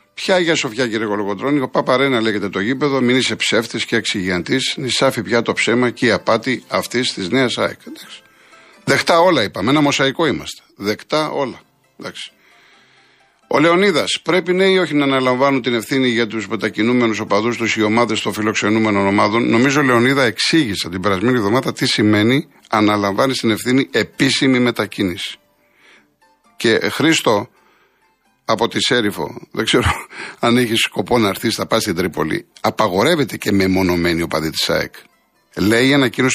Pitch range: 105-140 Hz